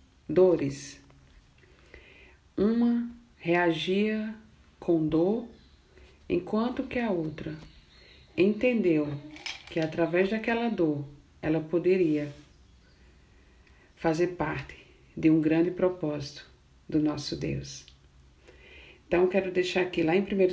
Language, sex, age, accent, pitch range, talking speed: Portuguese, female, 50-69, Brazilian, 145-185 Hz, 95 wpm